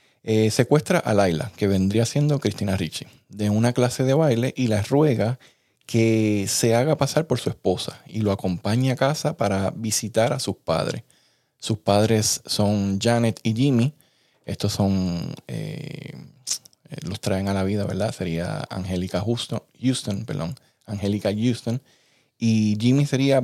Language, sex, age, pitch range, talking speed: English, male, 20-39, 100-130 Hz, 145 wpm